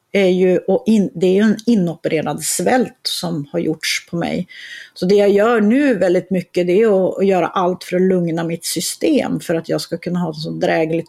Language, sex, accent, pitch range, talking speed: English, female, Swedish, 170-210 Hz, 220 wpm